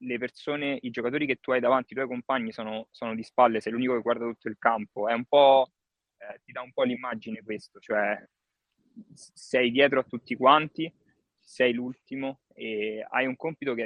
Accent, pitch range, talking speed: native, 110-135 Hz, 195 wpm